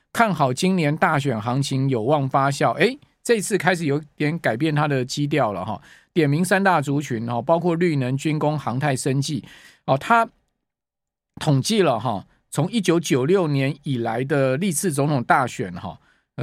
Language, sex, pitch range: Chinese, male, 130-170 Hz